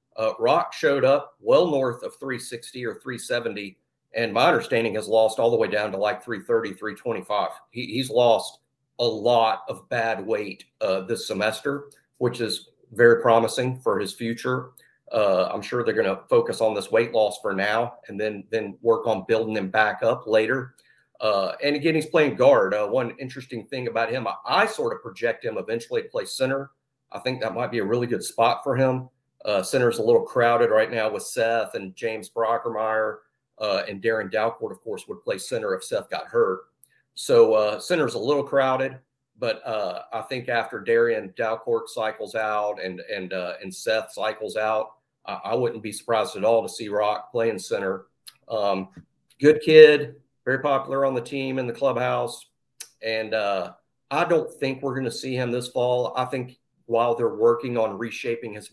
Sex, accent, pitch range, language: male, American, 110-145 Hz, English